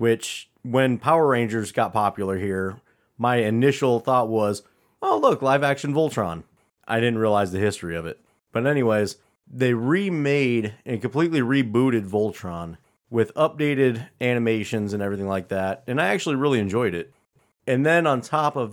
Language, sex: English, male